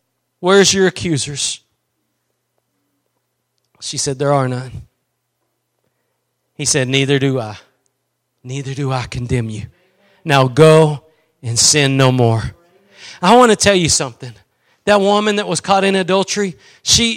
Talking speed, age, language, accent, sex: 135 wpm, 40-59, English, American, male